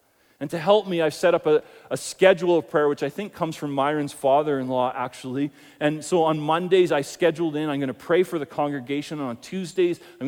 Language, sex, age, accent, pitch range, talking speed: English, male, 40-59, American, 145-180 Hz, 220 wpm